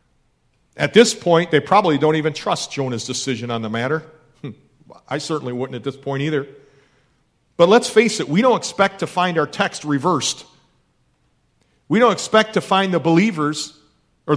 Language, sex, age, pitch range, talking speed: English, male, 40-59, 135-170 Hz, 165 wpm